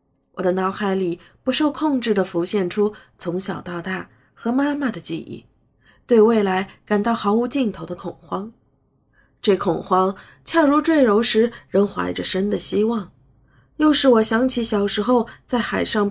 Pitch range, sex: 175-225 Hz, female